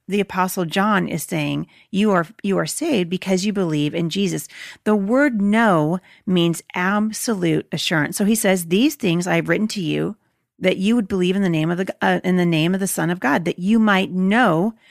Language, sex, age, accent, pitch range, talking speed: English, female, 40-59, American, 175-220 Hz, 215 wpm